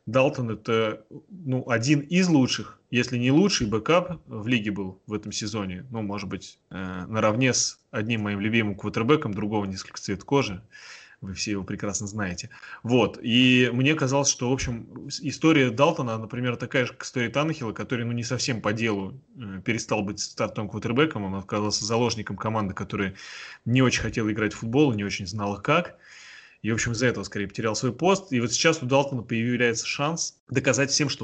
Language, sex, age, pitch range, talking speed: Russian, male, 20-39, 105-135 Hz, 185 wpm